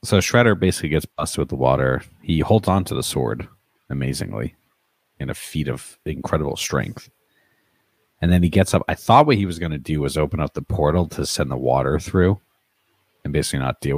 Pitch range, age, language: 70-95 Hz, 40-59, English